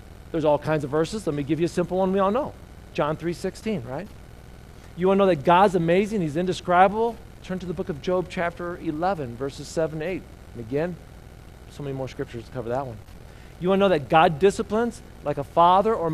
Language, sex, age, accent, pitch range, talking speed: English, male, 40-59, American, 150-200 Hz, 225 wpm